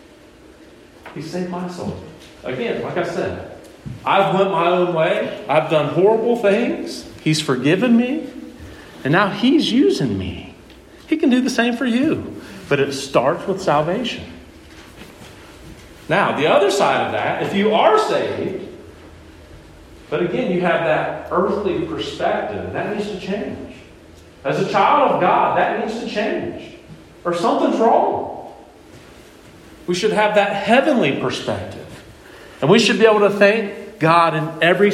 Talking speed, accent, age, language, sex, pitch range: 150 wpm, American, 40-59, English, male, 165-220 Hz